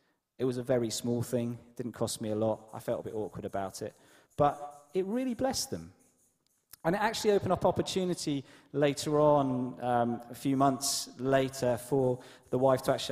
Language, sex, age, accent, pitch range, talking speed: English, male, 30-49, British, 115-145 Hz, 190 wpm